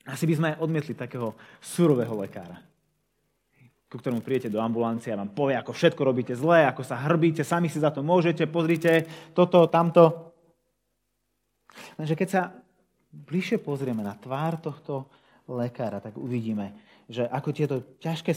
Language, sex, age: Slovak, male, 30-49